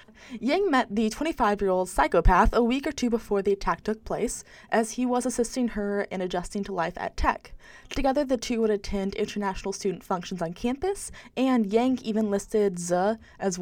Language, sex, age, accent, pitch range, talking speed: English, female, 20-39, American, 185-230 Hz, 180 wpm